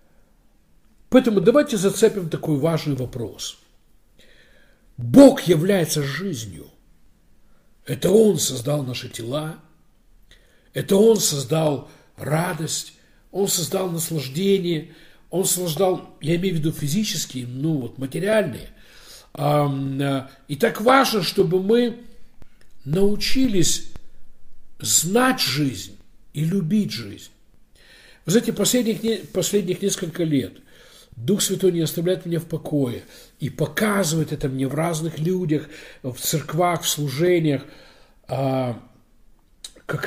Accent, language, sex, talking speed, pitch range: native, Russian, male, 100 wpm, 140-195 Hz